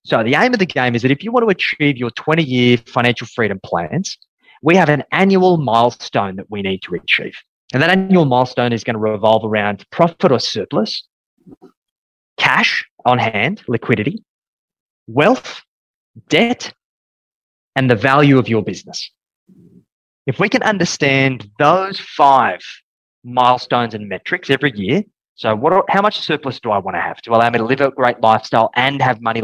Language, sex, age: English, male, 20-39